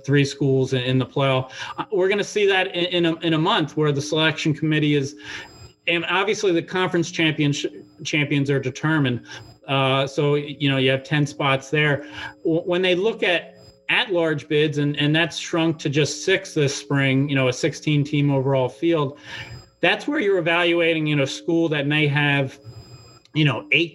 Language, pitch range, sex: English, 135-160 Hz, male